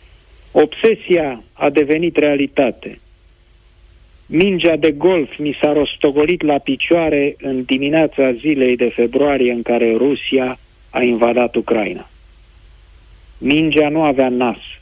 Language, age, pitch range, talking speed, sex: Romanian, 50-69, 110-145 Hz, 110 wpm, male